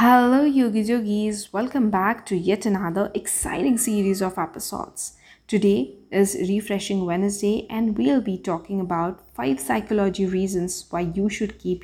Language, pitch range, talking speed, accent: English, 180-220 Hz, 140 wpm, Indian